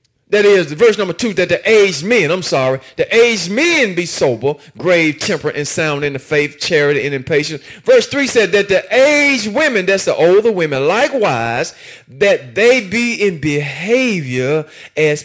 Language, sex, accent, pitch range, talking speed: English, male, American, 180-275 Hz, 175 wpm